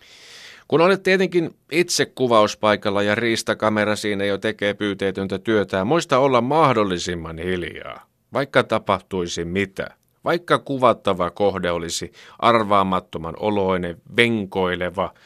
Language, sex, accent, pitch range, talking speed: Finnish, male, native, 90-120 Hz, 105 wpm